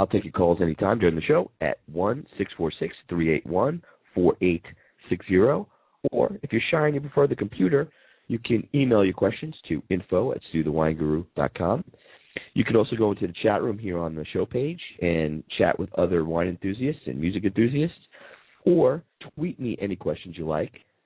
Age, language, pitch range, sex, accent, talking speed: 40-59, English, 80-115 Hz, male, American, 160 wpm